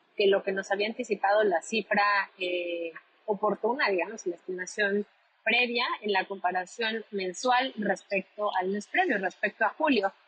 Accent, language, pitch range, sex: Mexican, Spanish, 205-255 Hz, female